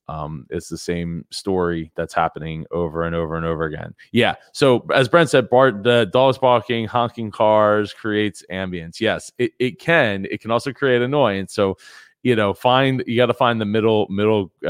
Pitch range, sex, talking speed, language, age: 90-105 Hz, male, 190 wpm, English, 20-39